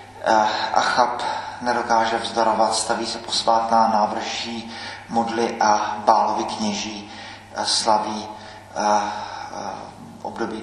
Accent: native